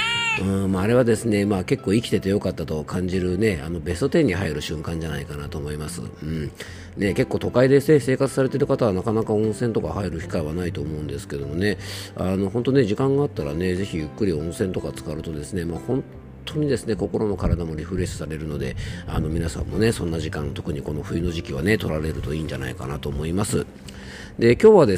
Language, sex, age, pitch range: Japanese, male, 40-59, 85-120 Hz